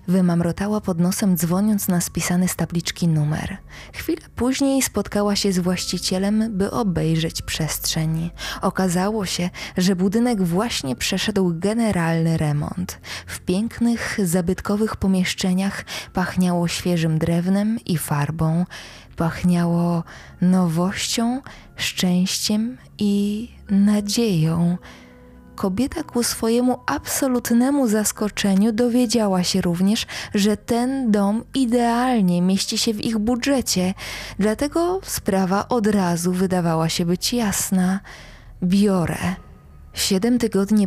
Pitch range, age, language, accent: 175-225 Hz, 20-39, Polish, native